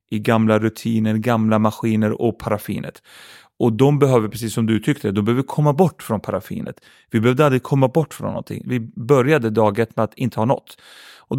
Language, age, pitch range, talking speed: Swedish, 30-49, 105-130 Hz, 190 wpm